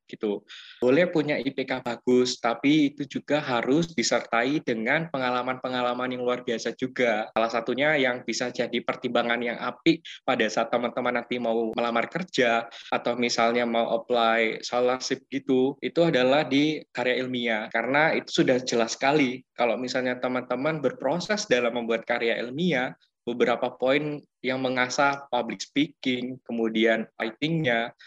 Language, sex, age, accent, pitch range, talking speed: Indonesian, male, 20-39, native, 120-140 Hz, 135 wpm